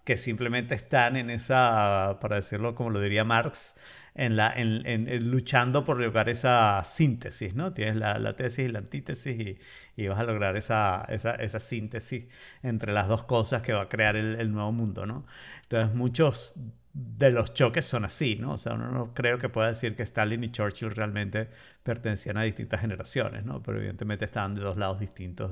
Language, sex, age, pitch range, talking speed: Spanish, male, 50-69, 110-130 Hz, 200 wpm